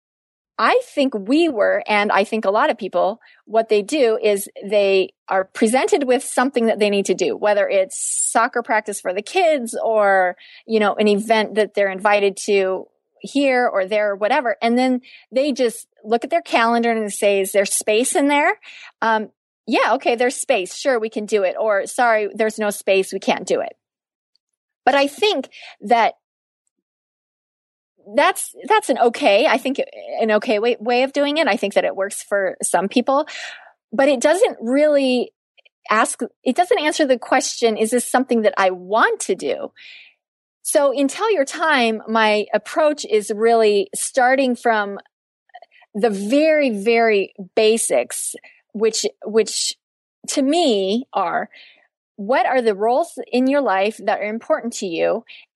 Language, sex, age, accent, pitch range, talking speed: English, female, 30-49, American, 210-275 Hz, 165 wpm